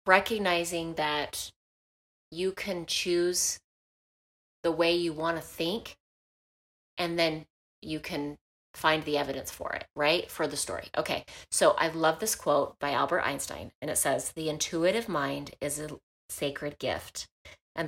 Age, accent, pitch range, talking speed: 30-49, American, 145-175 Hz, 150 wpm